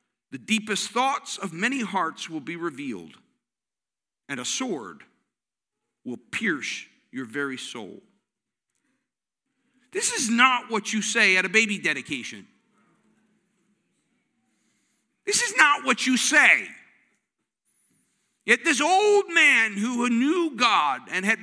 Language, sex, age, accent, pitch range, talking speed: English, male, 50-69, American, 185-265 Hz, 120 wpm